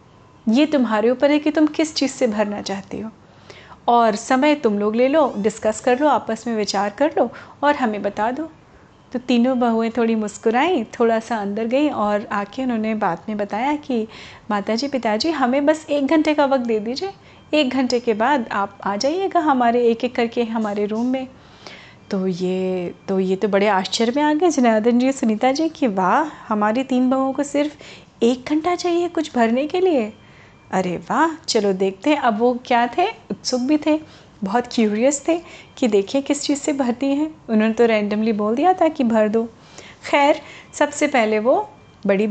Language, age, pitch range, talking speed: Hindi, 30-49, 210-275 Hz, 190 wpm